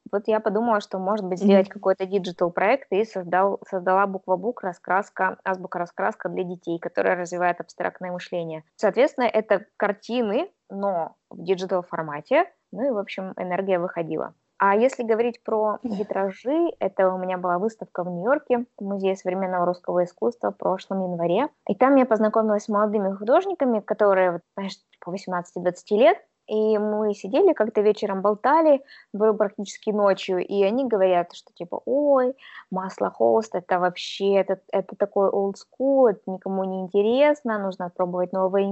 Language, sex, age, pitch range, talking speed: Russian, female, 20-39, 185-215 Hz, 145 wpm